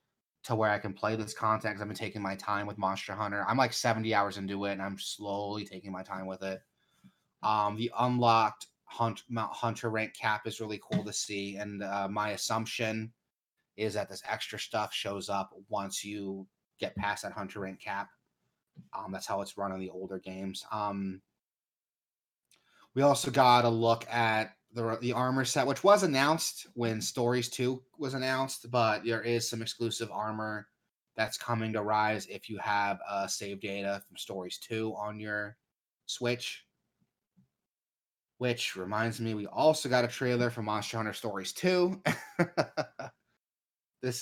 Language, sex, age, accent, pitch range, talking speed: English, male, 30-49, American, 105-120 Hz, 170 wpm